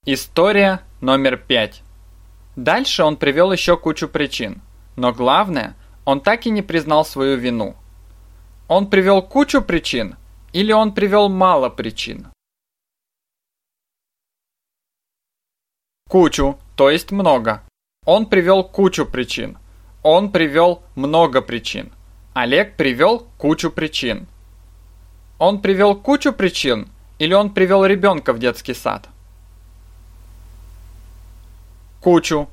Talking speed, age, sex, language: 100 wpm, 20-39, male, Russian